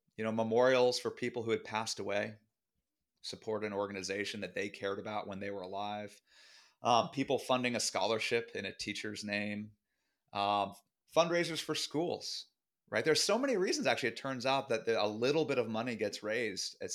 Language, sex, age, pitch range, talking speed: English, male, 30-49, 100-130 Hz, 180 wpm